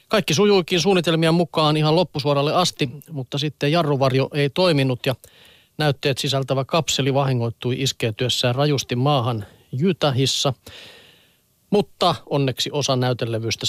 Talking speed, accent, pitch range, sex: 110 wpm, native, 125-155 Hz, male